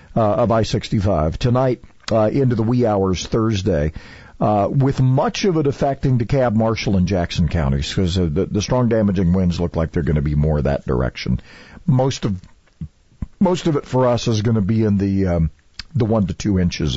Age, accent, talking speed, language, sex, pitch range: 50-69, American, 200 wpm, English, male, 85-120 Hz